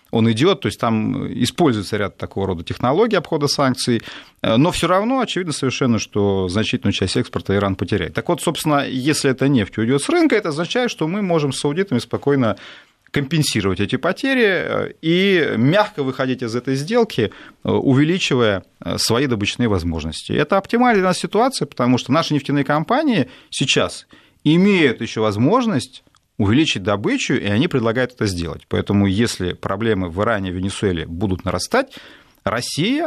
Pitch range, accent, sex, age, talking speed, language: 105-155 Hz, native, male, 30-49, 150 wpm, Russian